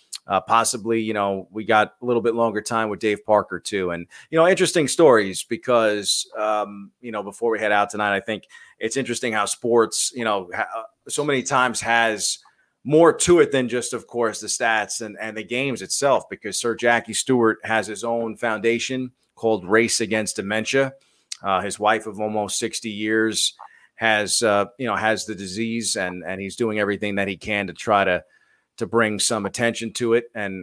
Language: English